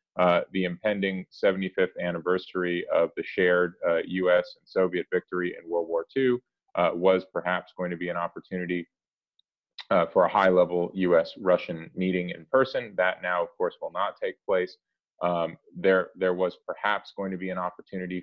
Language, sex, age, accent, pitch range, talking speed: English, male, 30-49, American, 90-105 Hz, 170 wpm